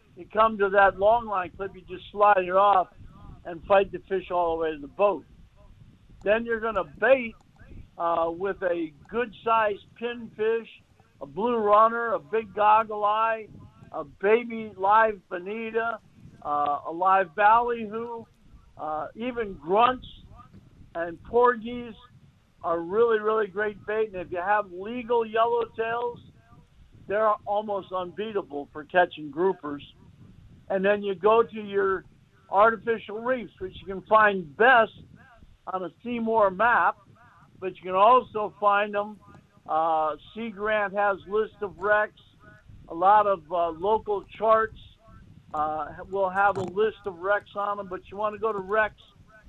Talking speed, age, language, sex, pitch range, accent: 145 wpm, 60-79, English, male, 180-220 Hz, American